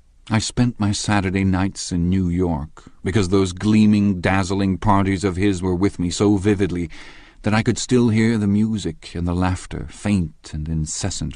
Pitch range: 80-95 Hz